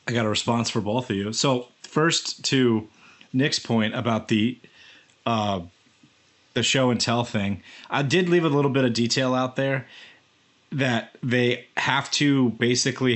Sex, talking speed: male, 165 wpm